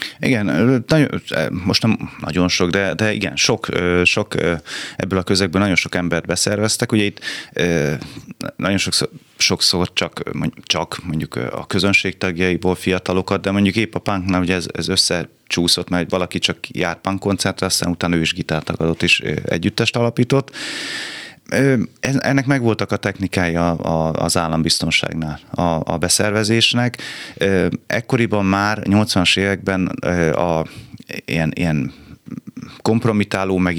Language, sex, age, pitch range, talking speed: Hungarian, male, 30-49, 85-105 Hz, 125 wpm